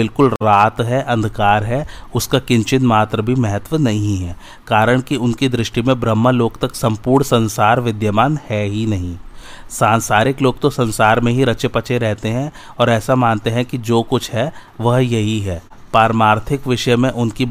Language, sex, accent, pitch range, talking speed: Hindi, male, native, 110-125 Hz, 175 wpm